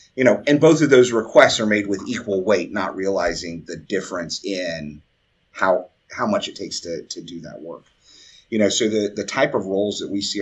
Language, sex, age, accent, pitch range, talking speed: English, male, 30-49, American, 95-110 Hz, 220 wpm